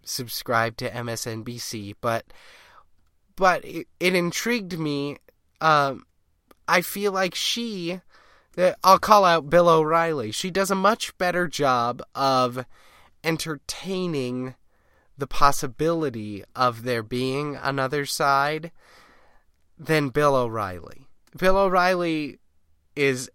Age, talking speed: 20-39, 105 wpm